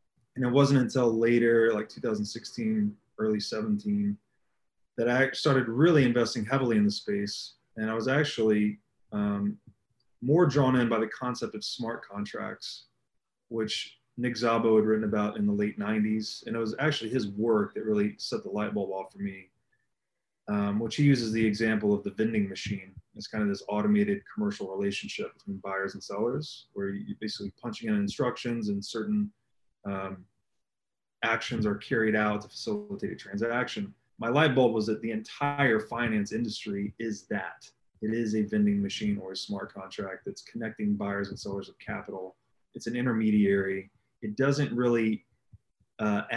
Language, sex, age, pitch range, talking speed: English, male, 20-39, 105-140 Hz, 165 wpm